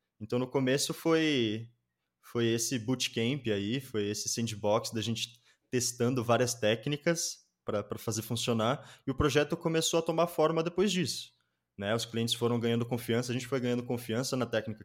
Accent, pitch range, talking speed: Brazilian, 110-125 Hz, 165 wpm